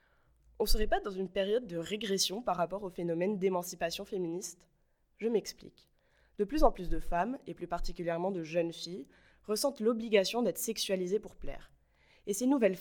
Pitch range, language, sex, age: 175-215 Hz, French, female, 20-39